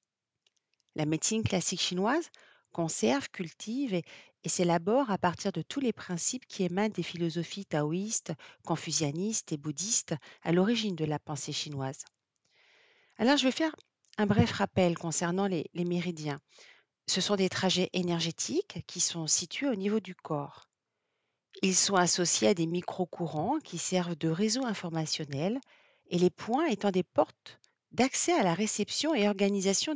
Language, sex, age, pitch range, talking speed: French, female, 40-59, 165-225 Hz, 150 wpm